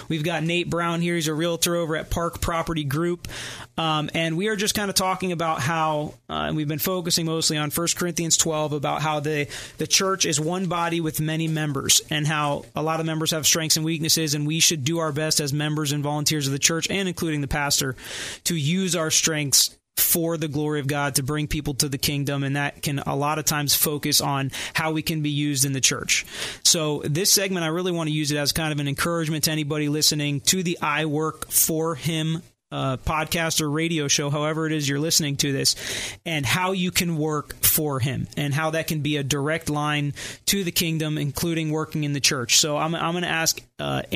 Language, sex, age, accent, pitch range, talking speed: English, male, 30-49, American, 145-165 Hz, 225 wpm